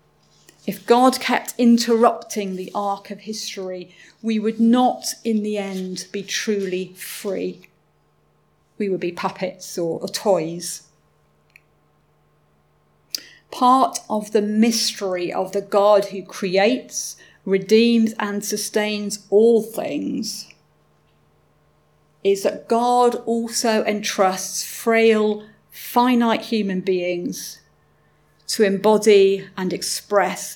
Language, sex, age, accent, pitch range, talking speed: English, female, 40-59, British, 185-220 Hz, 100 wpm